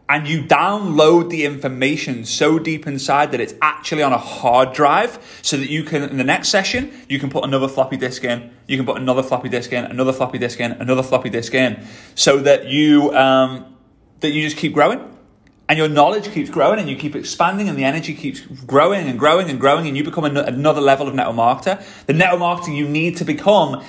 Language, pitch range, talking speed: English, 130-170 Hz, 220 wpm